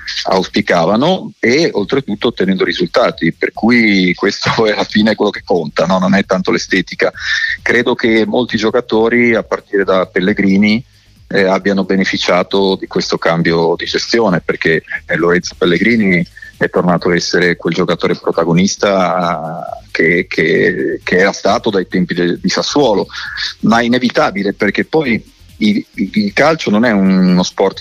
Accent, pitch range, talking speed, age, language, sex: native, 90-110 Hz, 140 wpm, 40-59, Italian, male